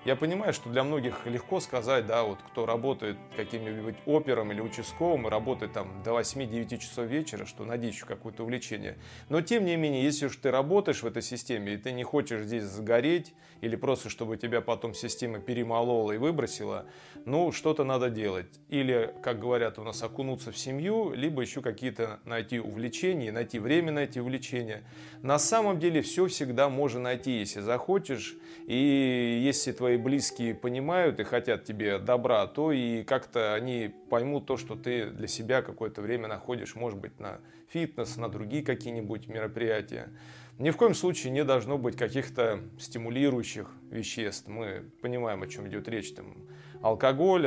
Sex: male